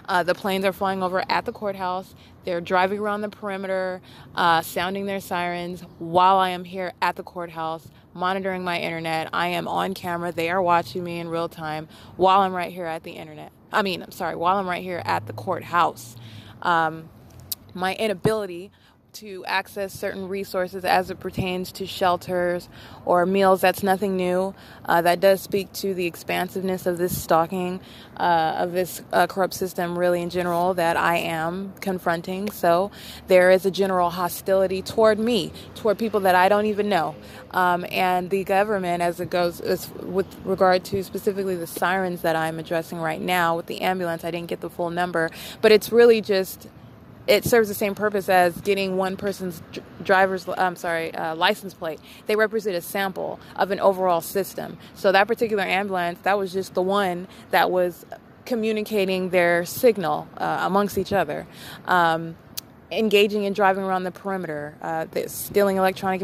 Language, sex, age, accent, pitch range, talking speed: English, female, 20-39, American, 175-195 Hz, 175 wpm